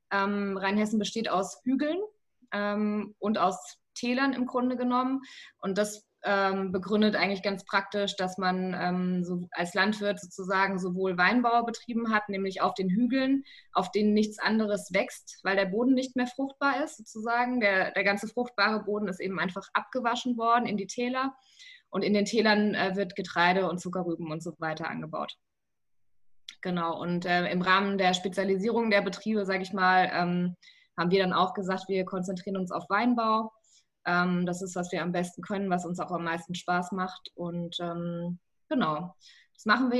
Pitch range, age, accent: 185-220 Hz, 20-39, German